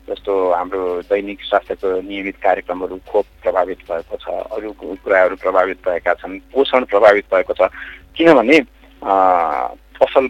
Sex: male